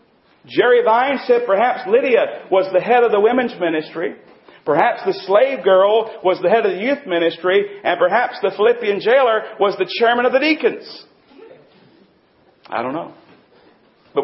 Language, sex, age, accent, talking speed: English, male, 40-59, American, 160 wpm